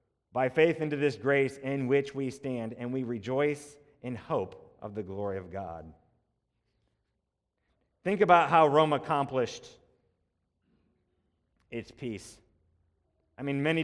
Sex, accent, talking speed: male, American, 125 wpm